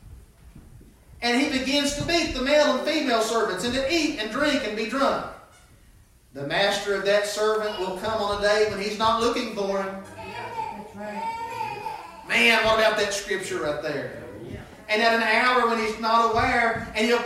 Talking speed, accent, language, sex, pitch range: 175 wpm, American, English, male, 205-265 Hz